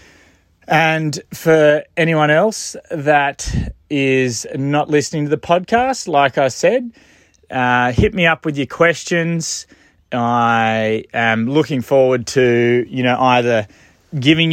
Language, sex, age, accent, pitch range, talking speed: English, male, 30-49, Australian, 115-145 Hz, 125 wpm